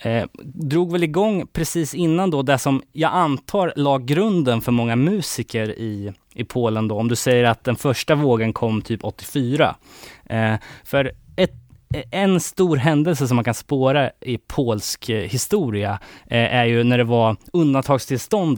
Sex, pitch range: male, 110-140 Hz